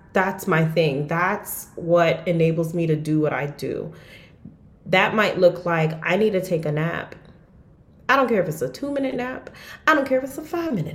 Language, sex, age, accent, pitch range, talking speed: English, female, 30-49, American, 170-215 Hz, 215 wpm